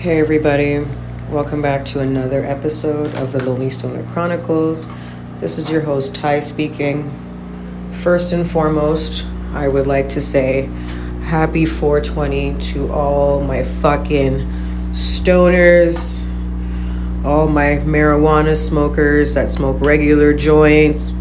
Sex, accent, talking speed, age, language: female, American, 115 wpm, 30-49, English